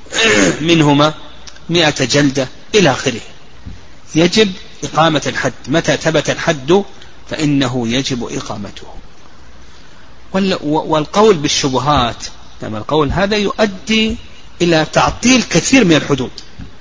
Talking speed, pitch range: 95 wpm, 135-190 Hz